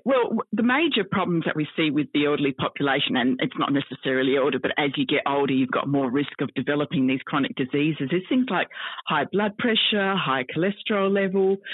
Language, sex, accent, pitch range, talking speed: English, female, Australian, 150-200 Hz, 200 wpm